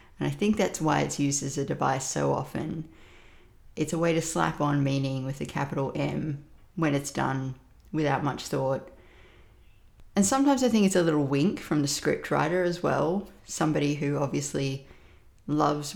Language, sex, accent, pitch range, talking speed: English, female, Australian, 140-170 Hz, 175 wpm